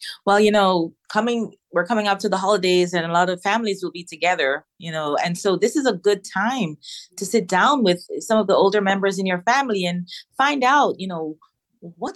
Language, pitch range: English, 165-220 Hz